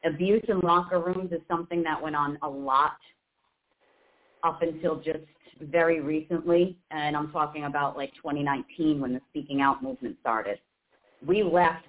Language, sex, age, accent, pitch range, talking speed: English, female, 40-59, American, 140-160 Hz, 150 wpm